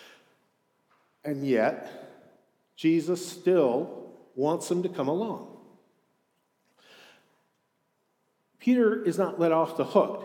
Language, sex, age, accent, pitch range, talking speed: English, male, 50-69, American, 135-185 Hz, 95 wpm